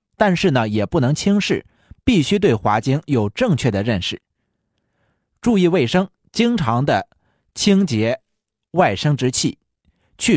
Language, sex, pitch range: Chinese, male, 110-160 Hz